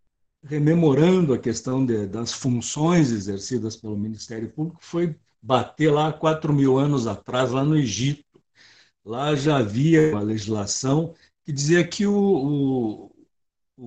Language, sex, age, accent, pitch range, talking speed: Portuguese, male, 60-79, Brazilian, 105-145 Hz, 125 wpm